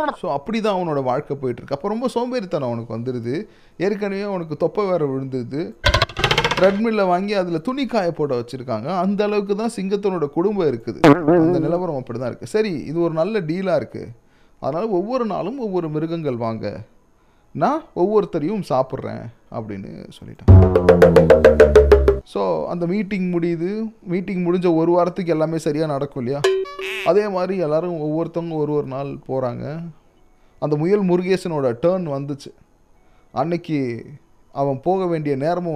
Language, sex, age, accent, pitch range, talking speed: Tamil, male, 30-49, native, 135-200 Hz, 130 wpm